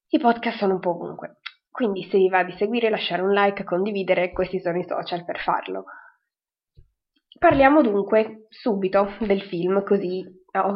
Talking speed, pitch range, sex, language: 160 wpm, 180-210 Hz, female, Italian